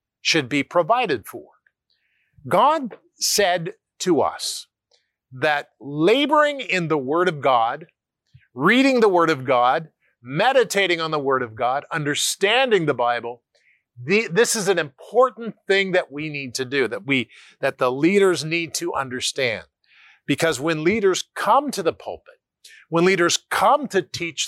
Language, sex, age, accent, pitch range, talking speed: English, male, 50-69, American, 135-185 Hz, 145 wpm